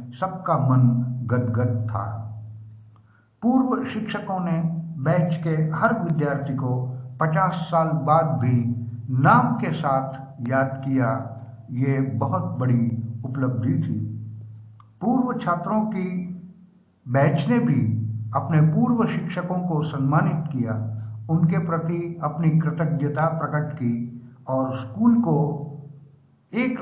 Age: 60-79